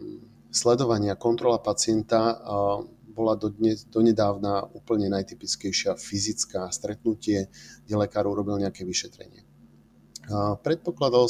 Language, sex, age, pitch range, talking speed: Slovak, male, 30-49, 100-115 Hz, 90 wpm